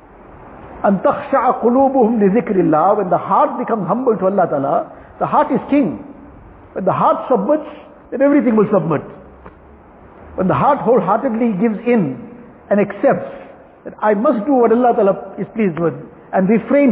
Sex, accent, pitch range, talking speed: male, Indian, 200-255 Hz, 140 wpm